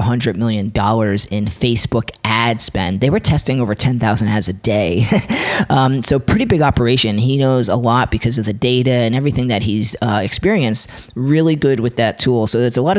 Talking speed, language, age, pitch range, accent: 200 wpm, English, 30-49, 110-130 Hz, American